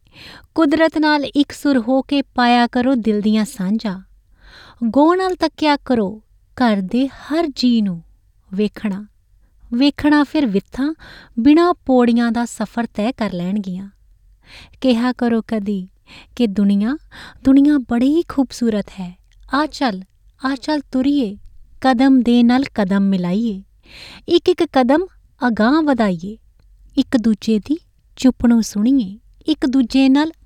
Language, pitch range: Punjabi, 210-270 Hz